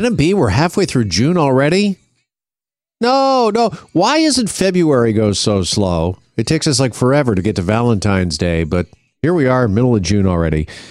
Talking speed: 175 wpm